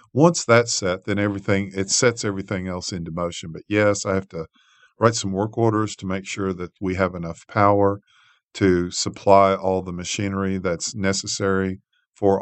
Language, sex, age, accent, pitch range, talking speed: English, male, 50-69, American, 90-100 Hz, 175 wpm